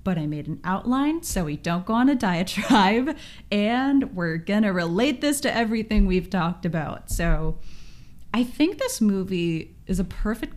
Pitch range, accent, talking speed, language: 160-205 Hz, American, 170 wpm, English